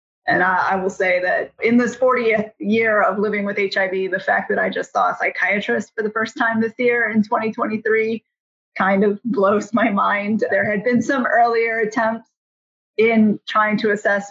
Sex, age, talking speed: female, 30-49, 190 wpm